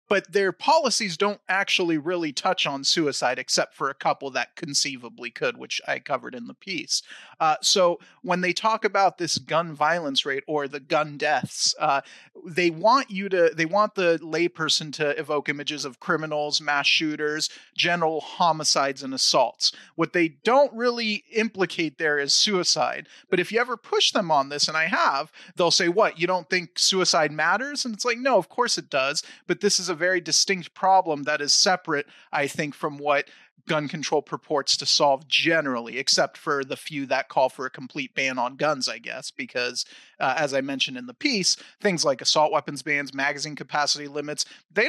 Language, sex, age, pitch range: English, male, 30-49, 145-190 Hz